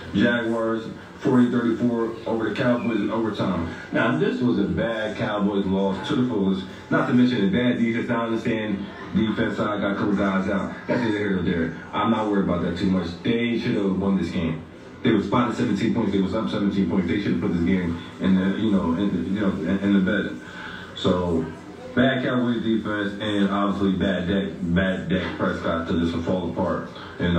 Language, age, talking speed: English, 20-39, 210 wpm